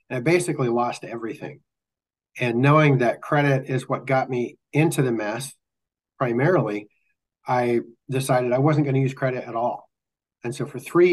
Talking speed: 160 wpm